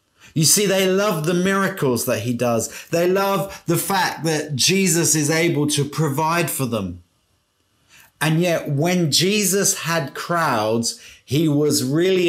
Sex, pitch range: male, 105-150 Hz